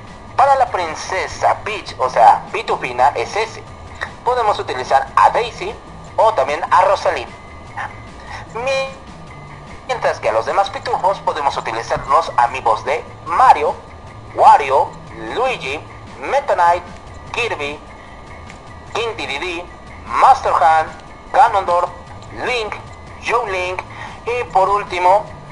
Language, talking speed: Spanish, 105 wpm